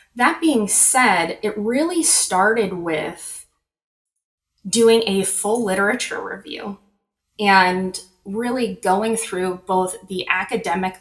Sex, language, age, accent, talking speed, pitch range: female, English, 20-39, American, 105 wpm, 175-215 Hz